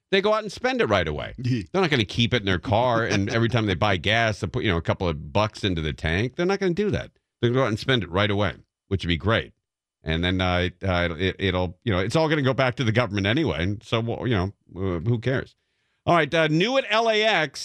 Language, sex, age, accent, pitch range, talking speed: English, male, 40-59, American, 100-150 Hz, 280 wpm